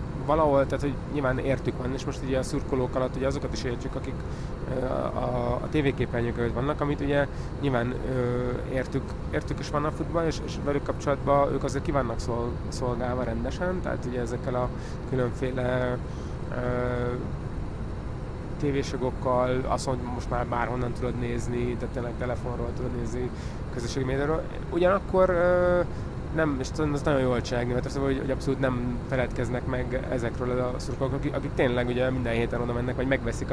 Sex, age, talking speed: male, 20-39, 170 wpm